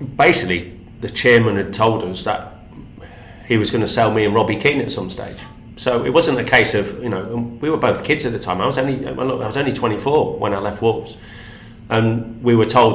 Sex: male